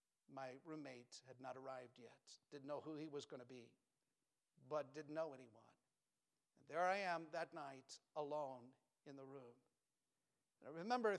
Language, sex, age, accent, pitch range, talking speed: English, male, 50-69, American, 150-230 Hz, 155 wpm